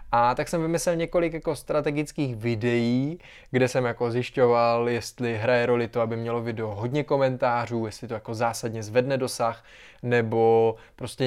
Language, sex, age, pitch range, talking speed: Czech, male, 20-39, 120-145 Hz, 155 wpm